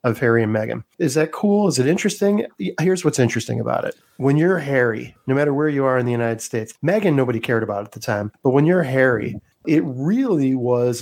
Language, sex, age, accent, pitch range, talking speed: English, male, 40-59, American, 120-135 Hz, 225 wpm